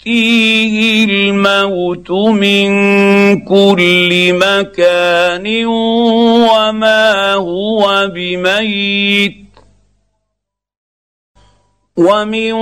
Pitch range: 175-220 Hz